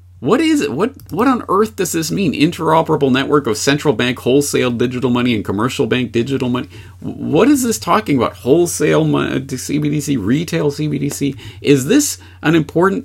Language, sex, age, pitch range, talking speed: English, male, 40-59, 90-135 Hz, 165 wpm